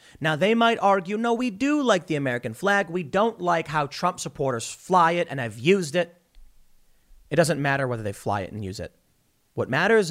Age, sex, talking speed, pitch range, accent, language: 30-49, male, 210 wpm, 130-190 Hz, American, English